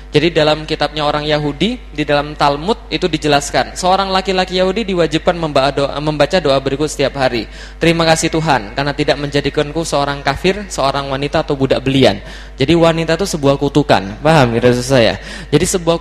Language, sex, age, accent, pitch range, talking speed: Indonesian, male, 20-39, native, 140-180 Hz, 155 wpm